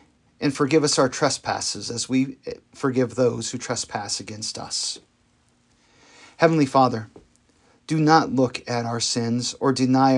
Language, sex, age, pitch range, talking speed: English, male, 40-59, 115-140 Hz, 135 wpm